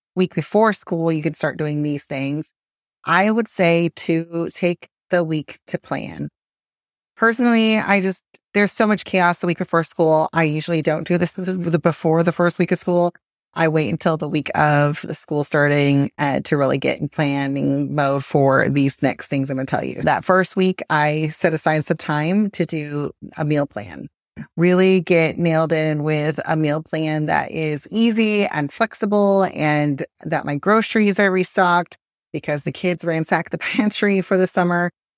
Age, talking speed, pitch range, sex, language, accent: 30-49, 180 wpm, 155-180 Hz, female, English, American